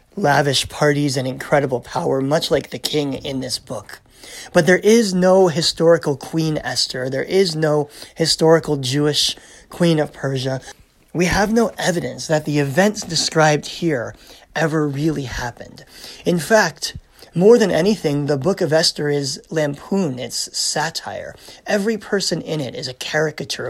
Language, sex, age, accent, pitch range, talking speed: English, male, 30-49, American, 130-170 Hz, 150 wpm